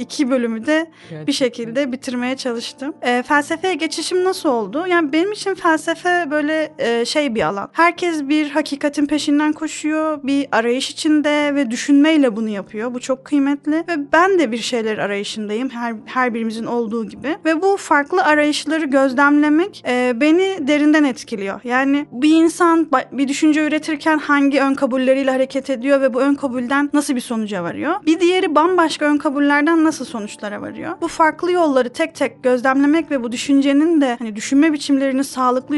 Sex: female